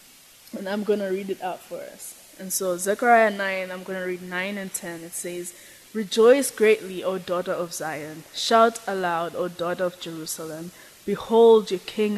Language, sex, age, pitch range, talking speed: English, female, 20-39, 175-200 Hz, 180 wpm